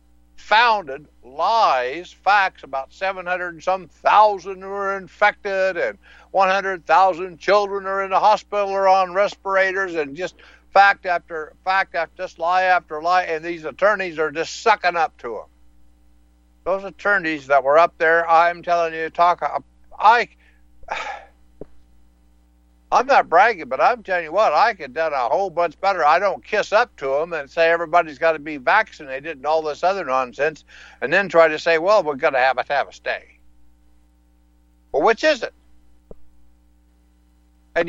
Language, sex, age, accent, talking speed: English, male, 60-79, American, 170 wpm